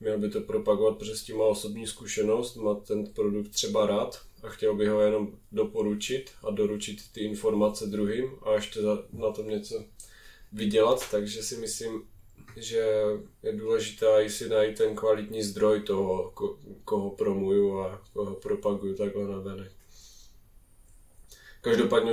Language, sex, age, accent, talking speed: Czech, male, 20-39, native, 145 wpm